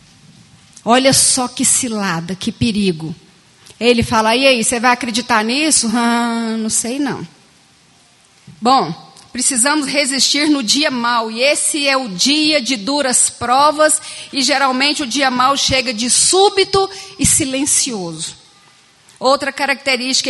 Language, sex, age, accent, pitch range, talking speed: Portuguese, female, 40-59, Brazilian, 235-300 Hz, 130 wpm